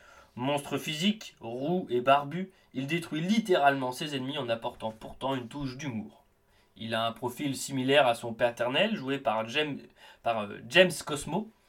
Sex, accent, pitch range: male, French, 115-150 Hz